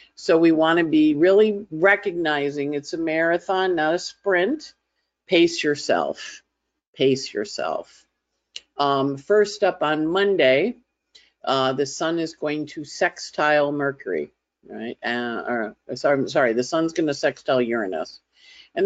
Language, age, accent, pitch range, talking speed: English, 50-69, American, 135-195 Hz, 135 wpm